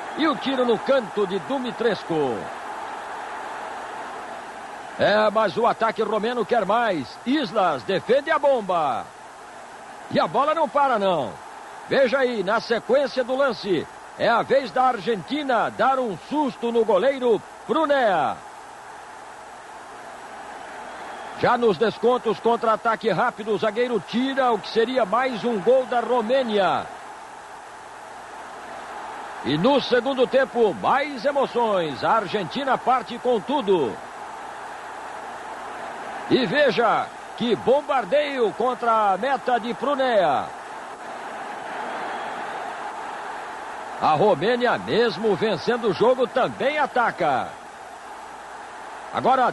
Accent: Brazilian